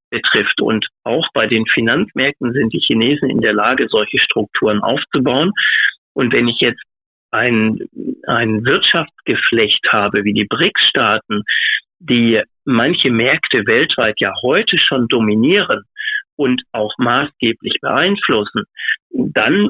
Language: German